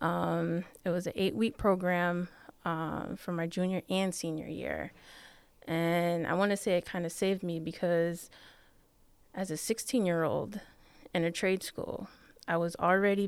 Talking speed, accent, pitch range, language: 155 wpm, American, 170-190 Hz, English